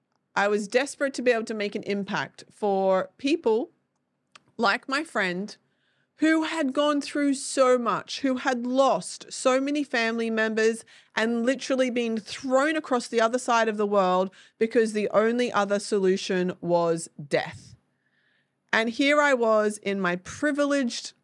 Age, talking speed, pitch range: 30-49, 150 wpm, 200-270 Hz